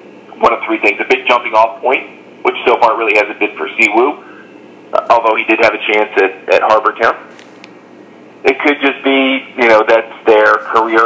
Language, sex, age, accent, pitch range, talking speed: English, male, 40-59, American, 115-160 Hz, 195 wpm